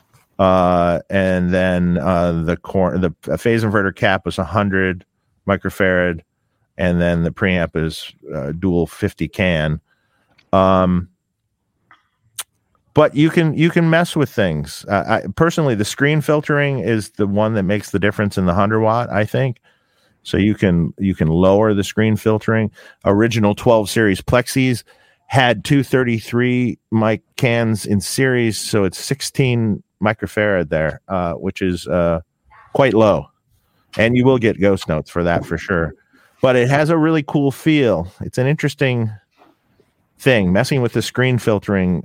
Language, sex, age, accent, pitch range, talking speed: English, male, 40-59, American, 95-125 Hz, 155 wpm